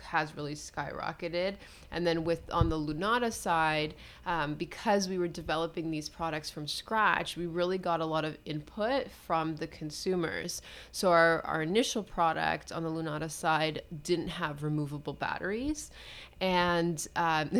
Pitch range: 160-185 Hz